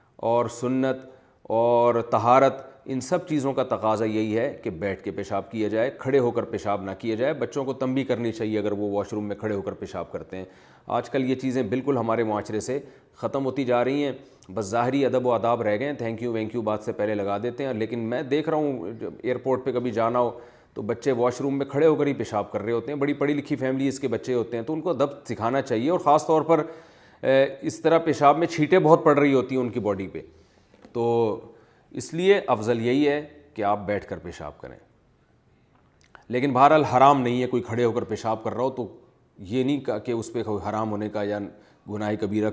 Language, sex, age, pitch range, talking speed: Urdu, male, 30-49, 110-135 Hz, 230 wpm